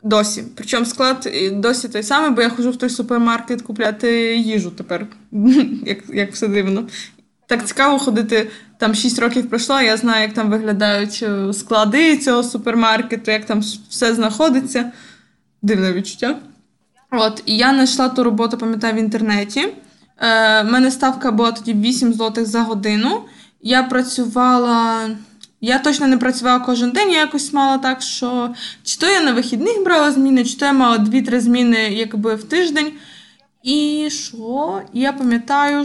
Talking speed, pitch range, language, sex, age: 155 wpm, 220-260 Hz, Ukrainian, female, 20-39